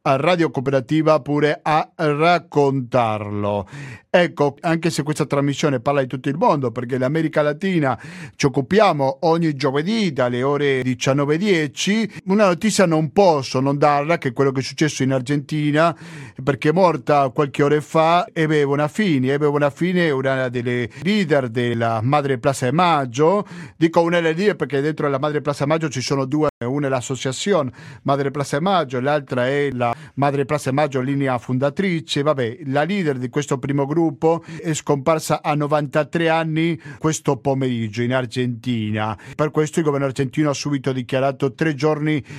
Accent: native